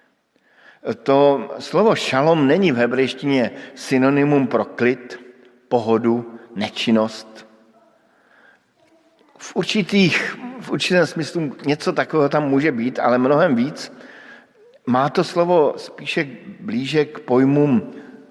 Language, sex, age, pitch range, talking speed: Slovak, male, 50-69, 115-150 Hz, 100 wpm